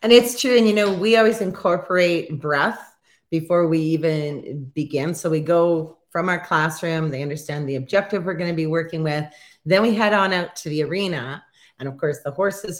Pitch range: 155-210 Hz